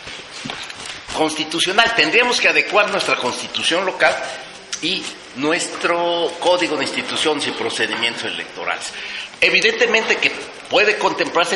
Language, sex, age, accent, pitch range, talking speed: Spanish, male, 40-59, Mexican, 145-185 Hz, 100 wpm